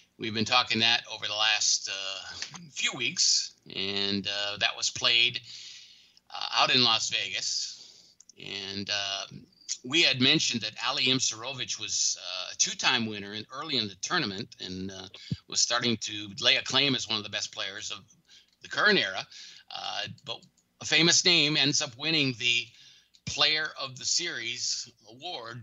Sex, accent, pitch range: male, American, 105-125 Hz